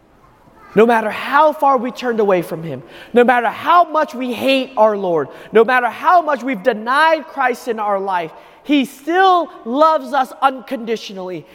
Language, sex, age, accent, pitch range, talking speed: English, male, 30-49, American, 225-295 Hz, 165 wpm